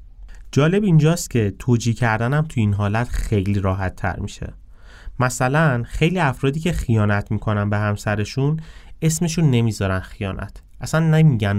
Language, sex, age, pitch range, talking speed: Persian, male, 30-49, 95-125 Hz, 130 wpm